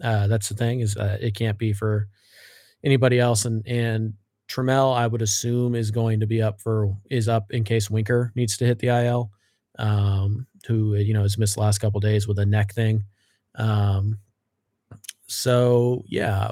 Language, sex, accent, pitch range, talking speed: English, male, American, 105-120 Hz, 195 wpm